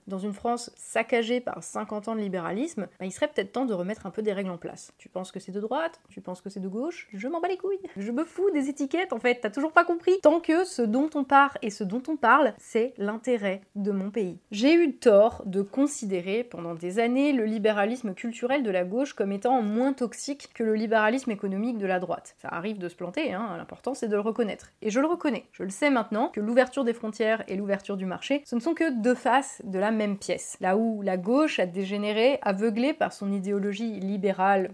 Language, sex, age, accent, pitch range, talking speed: French, female, 20-39, French, 195-250 Hz, 240 wpm